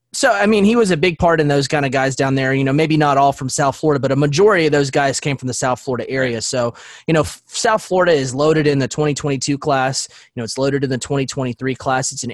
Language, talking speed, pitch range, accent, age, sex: English, 270 wpm, 130-155 Hz, American, 20-39, male